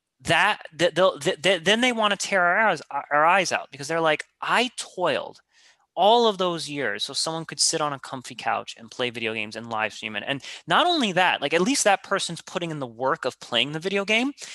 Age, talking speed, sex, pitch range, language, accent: 30-49, 235 wpm, male, 130-190 Hz, English, American